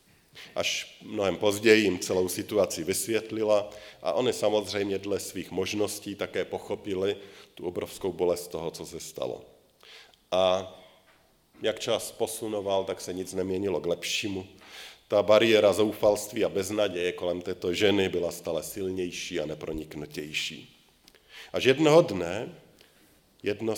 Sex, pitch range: male, 90-105 Hz